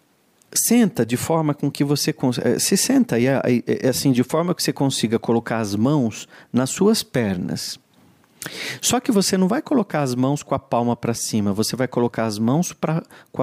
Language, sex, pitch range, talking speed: Portuguese, male, 120-190 Hz, 200 wpm